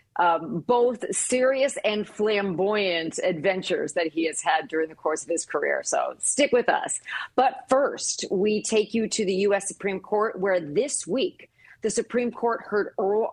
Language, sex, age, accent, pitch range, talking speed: English, female, 40-59, American, 175-245 Hz, 170 wpm